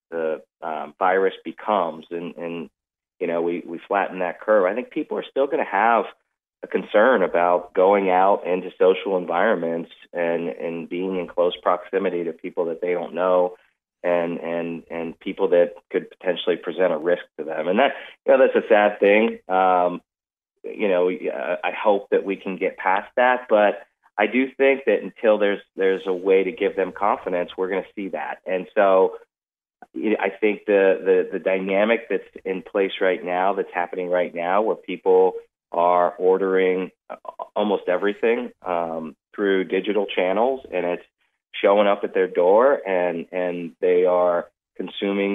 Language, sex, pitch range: English, male, 90-130 Hz